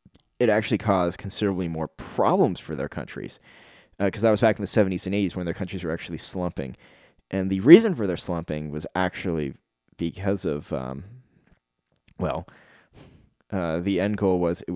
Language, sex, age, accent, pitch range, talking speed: English, male, 20-39, American, 85-105 Hz, 175 wpm